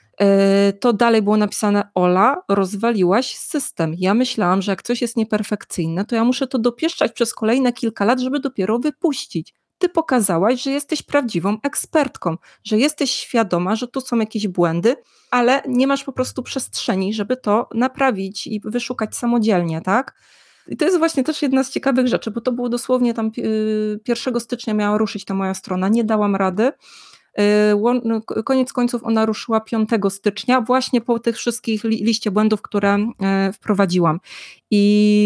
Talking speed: 155 wpm